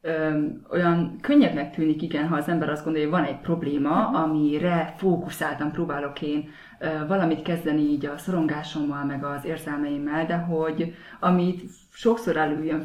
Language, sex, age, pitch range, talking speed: Hungarian, female, 30-49, 155-195 Hz, 150 wpm